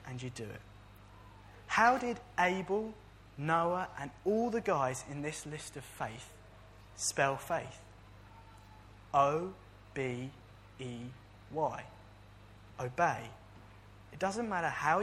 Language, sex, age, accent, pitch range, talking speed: English, male, 20-39, British, 105-150 Hz, 100 wpm